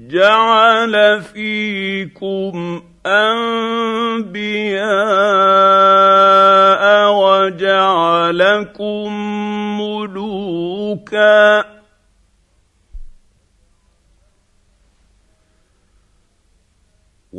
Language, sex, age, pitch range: English, male, 50-69, 170-210 Hz